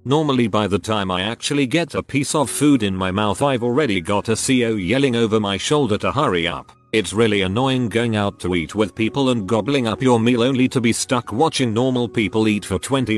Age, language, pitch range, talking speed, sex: 40-59, English, 100-135 Hz, 230 wpm, male